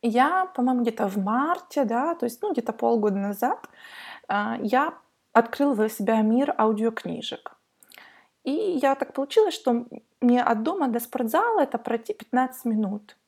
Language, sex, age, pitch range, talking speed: Russian, female, 20-39, 225-285 Hz, 150 wpm